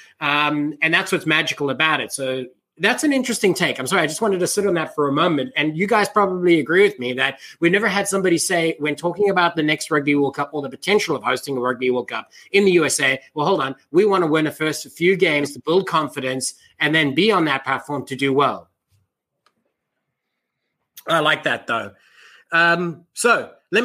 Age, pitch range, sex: 30-49, 140-185 Hz, male